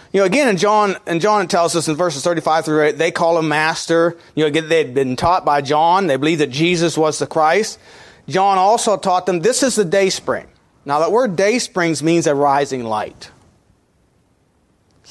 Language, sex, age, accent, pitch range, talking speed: English, male, 40-59, American, 150-200 Hz, 205 wpm